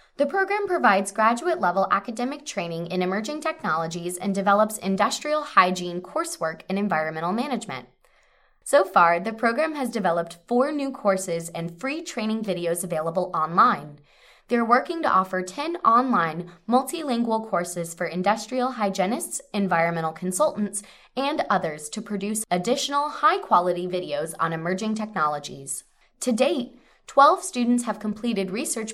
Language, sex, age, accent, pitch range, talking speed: English, female, 20-39, American, 180-260 Hz, 130 wpm